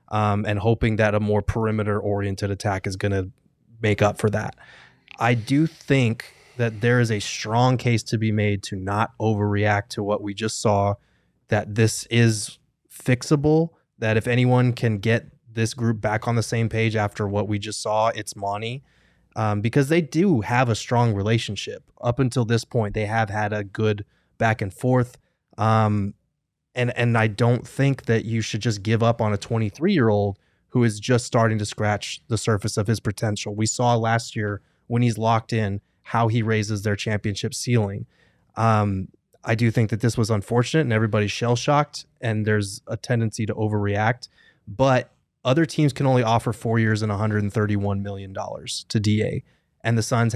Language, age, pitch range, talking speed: English, 20-39, 105-120 Hz, 180 wpm